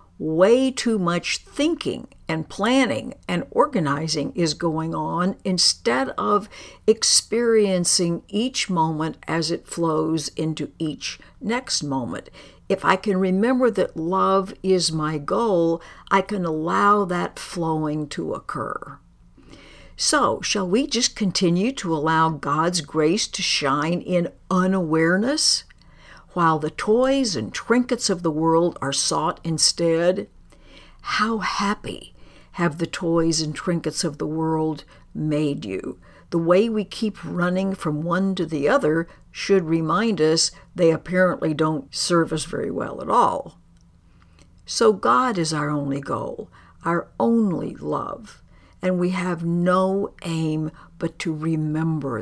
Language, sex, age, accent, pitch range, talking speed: English, female, 60-79, American, 155-195 Hz, 130 wpm